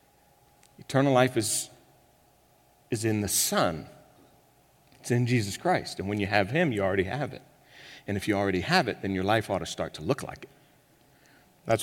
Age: 50-69